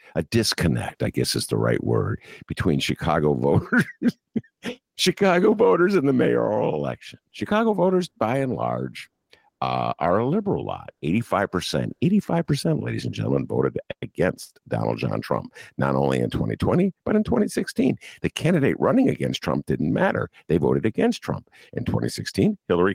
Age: 50-69